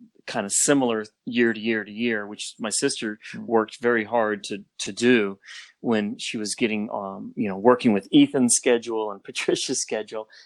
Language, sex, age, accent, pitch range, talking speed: English, male, 30-49, American, 115-140 Hz, 180 wpm